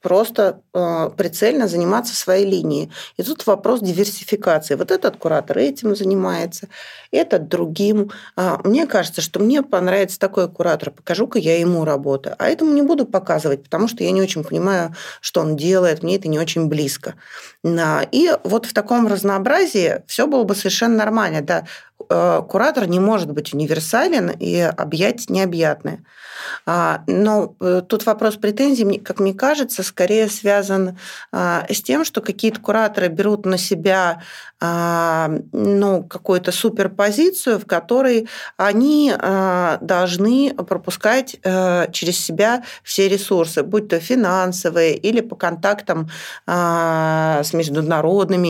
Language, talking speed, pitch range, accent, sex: Russian, 130 wpm, 170-215 Hz, native, female